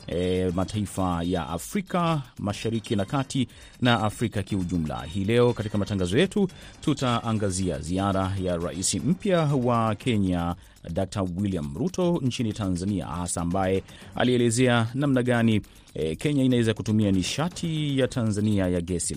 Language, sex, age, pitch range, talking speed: Swahili, male, 30-49, 95-125 Hz, 130 wpm